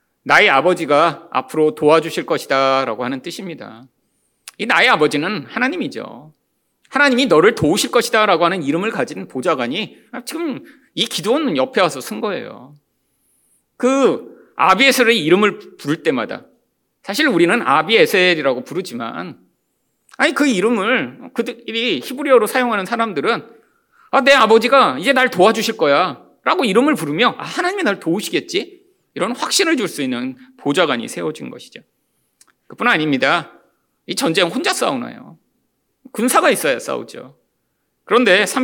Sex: male